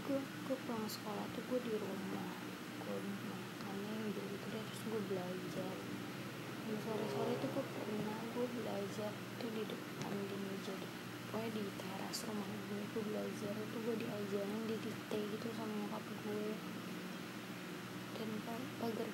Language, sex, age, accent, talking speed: Indonesian, female, 20-39, native, 140 wpm